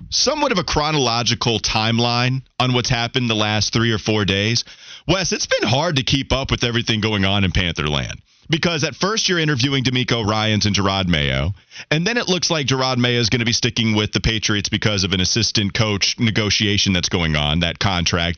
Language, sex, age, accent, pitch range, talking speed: English, male, 30-49, American, 100-165 Hz, 205 wpm